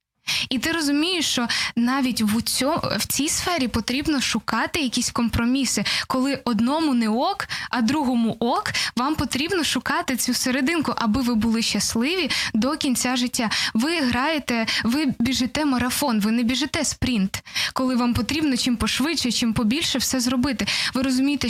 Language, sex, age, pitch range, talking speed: Ukrainian, female, 10-29, 225-270 Hz, 150 wpm